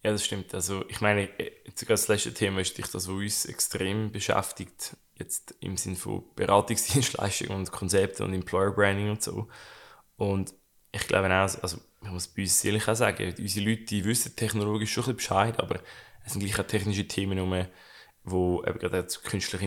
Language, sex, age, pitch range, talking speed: German, male, 20-39, 95-115 Hz, 190 wpm